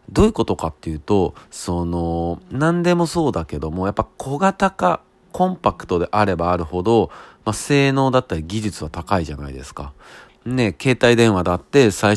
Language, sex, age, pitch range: Japanese, male, 40-59, 85-120 Hz